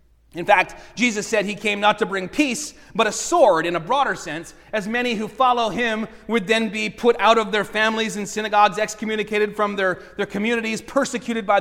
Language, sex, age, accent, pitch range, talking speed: English, male, 30-49, American, 220-290 Hz, 200 wpm